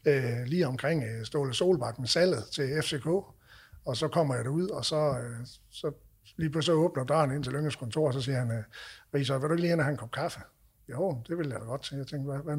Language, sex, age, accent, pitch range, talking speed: Danish, male, 60-79, native, 125-155 Hz, 230 wpm